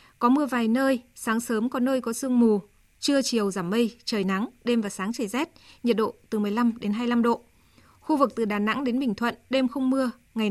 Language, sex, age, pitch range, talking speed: Vietnamese, female, 20-39, 220-265 Hz, 235 wpm